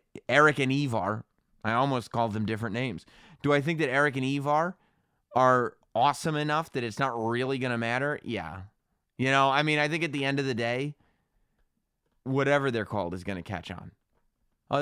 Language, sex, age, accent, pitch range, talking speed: English, male, 30-49, American, 110-145 Hz, 190 wpm